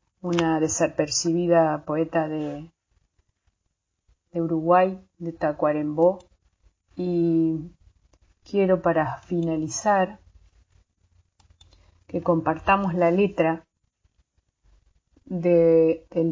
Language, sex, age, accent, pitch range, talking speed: Spanish, female, 30-49, Argentinian, 155-185 Hz, 65 wpm